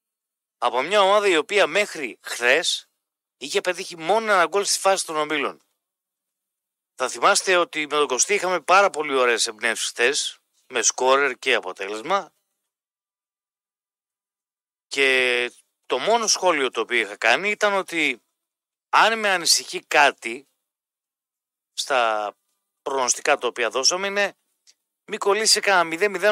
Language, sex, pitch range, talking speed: Greek, male, 130-200 Hz, 125 wpm